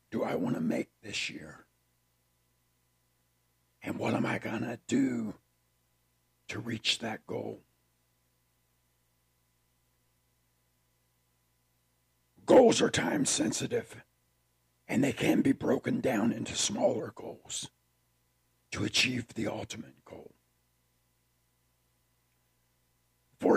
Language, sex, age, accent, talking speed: English, male, 60-79, American, 90 wpm